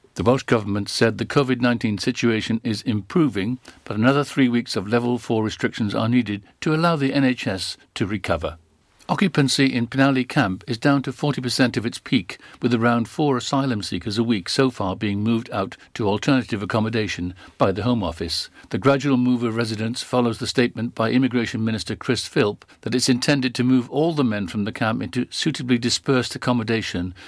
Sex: male